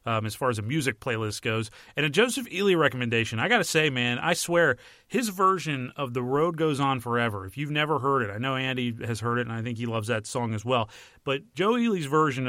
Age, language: 30-49, English